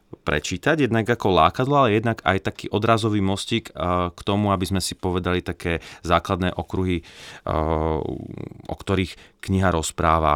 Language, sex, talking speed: Slovak, male, 135 wpm